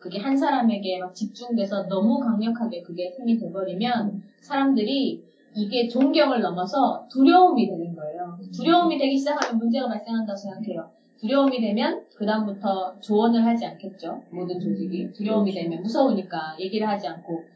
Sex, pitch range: female, 205-270 Hz